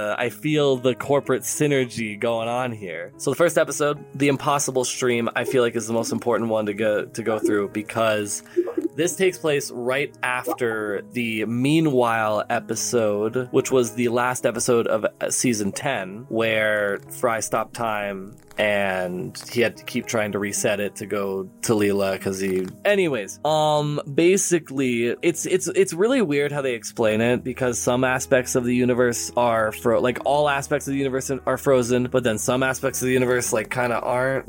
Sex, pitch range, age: male, 115-140 Hz, 20-39